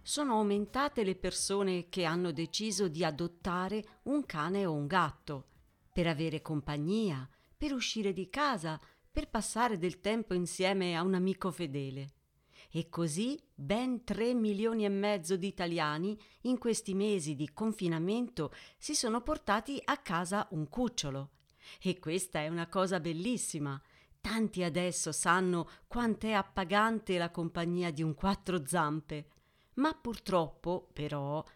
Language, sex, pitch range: Italian, female, 165-220 Hz